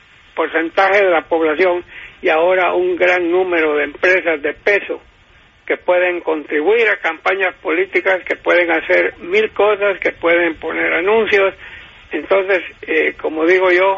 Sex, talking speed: male, 140 wpm